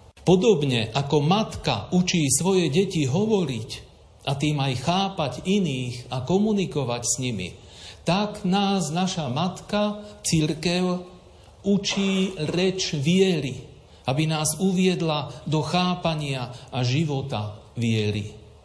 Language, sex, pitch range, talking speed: Slovak, male, 115-155 Hz, 105 wpm